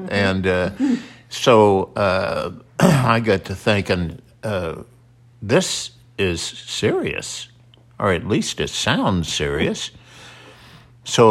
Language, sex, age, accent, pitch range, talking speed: English, male, 60-79, American, 90-120 Hz, 100 wpm